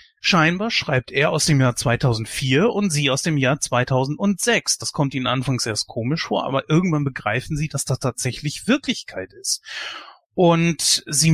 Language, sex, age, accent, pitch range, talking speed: German, male, 30-49, German, 130-170 Hz, 165 wpm